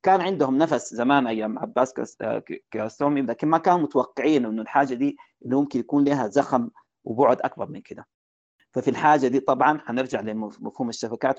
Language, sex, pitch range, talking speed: Arabic, male, 115-145 Hz, 165 wpm